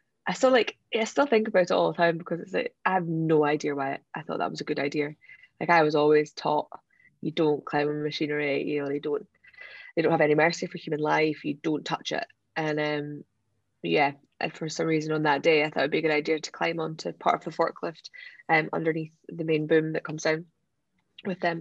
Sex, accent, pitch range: female, British, 150-165 Hz